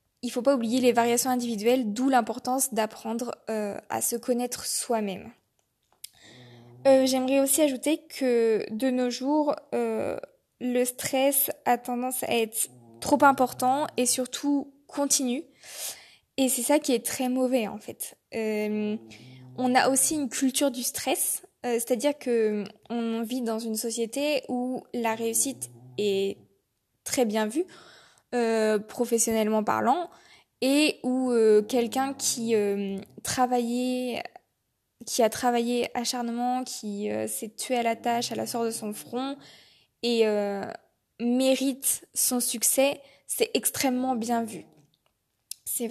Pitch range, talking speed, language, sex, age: 225-265 Hz, 135 wpm, French, female, 20-39